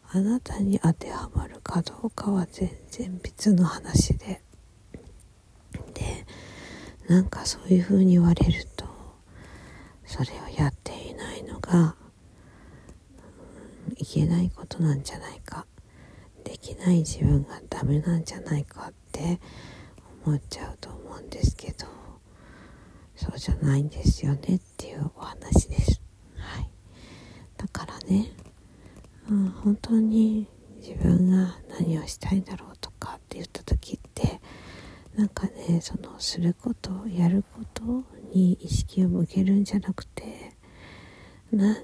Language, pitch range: Japanese, 150-200 Hz